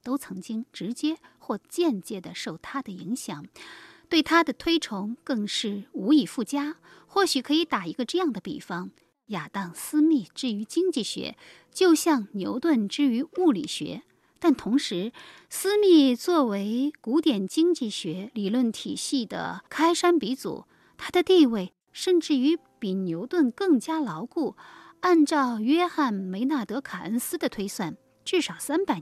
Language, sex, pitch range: Chinese, female, 215-320 Hz